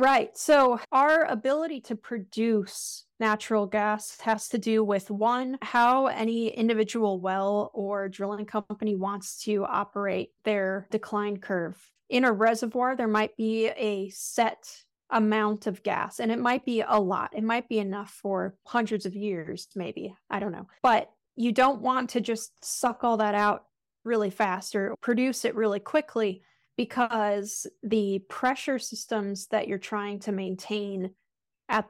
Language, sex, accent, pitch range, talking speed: English, female, American, 200-230 Hz, 155 wpm